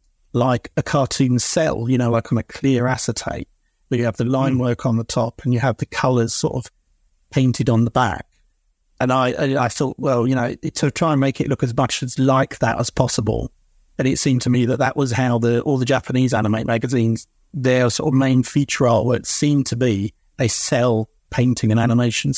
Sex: male